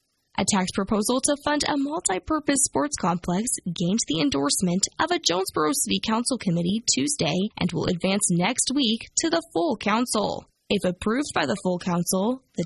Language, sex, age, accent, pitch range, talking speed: English, female, 10-29, American, 190-290 Hz, 165 wpm